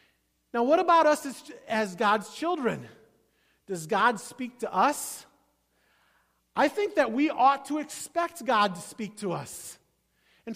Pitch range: 195-260 Hz